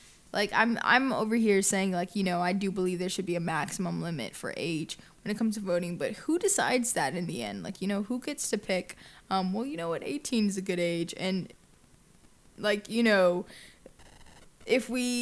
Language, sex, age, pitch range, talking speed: English, female, 10-29, 185-220 Hz, 215 wpm